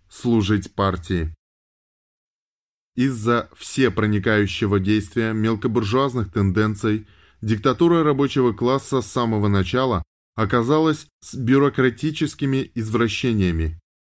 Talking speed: 75 wpm